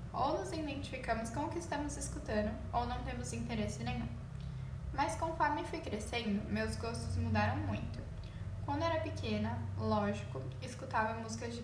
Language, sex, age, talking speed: Portuguese, female, 10-29, 145 wpm